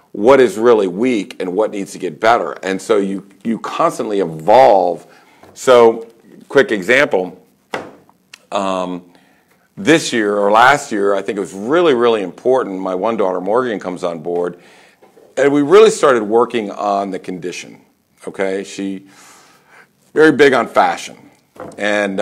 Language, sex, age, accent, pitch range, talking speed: English, male, 50-69, American, 95-115 Hz, 145 wpm